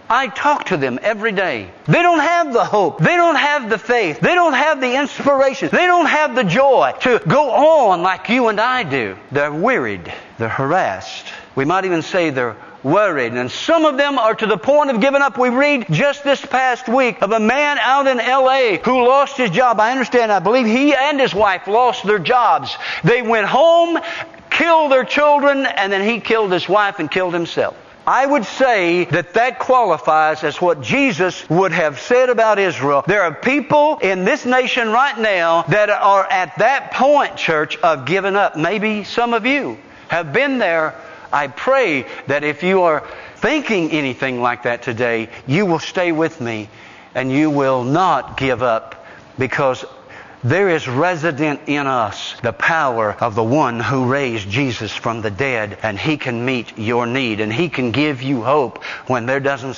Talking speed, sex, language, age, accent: 190 wpm, male, English, 50-69, American